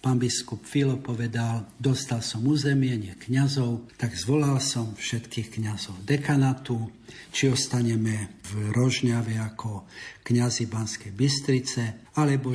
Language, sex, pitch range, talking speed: Slovak, male, 110-130 Hz, 110 wpm